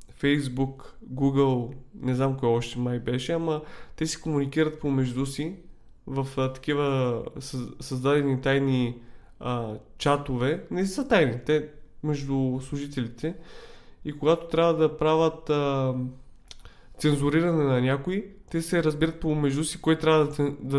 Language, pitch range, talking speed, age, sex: Bulgarian, 130-155 Hz, 125 wpm, 20-39, male